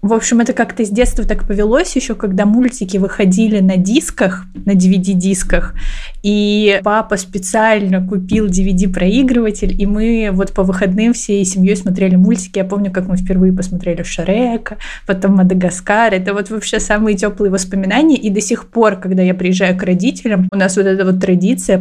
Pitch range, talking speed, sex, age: 190-225 Hz, 165 wpm, female, 20-39